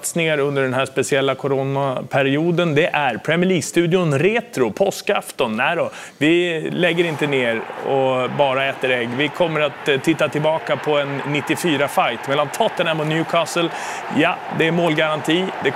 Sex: male